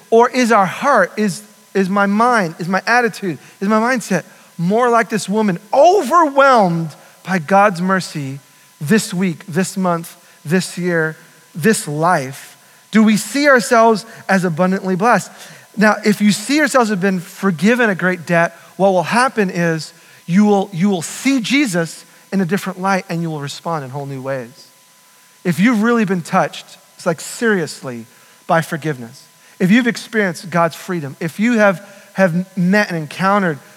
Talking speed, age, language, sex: 165 wpm, 40-59, English, male